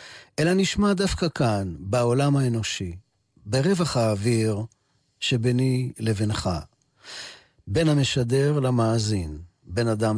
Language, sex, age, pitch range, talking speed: Hebrew, male, 50-69, 105-140 Hz, 90 wpm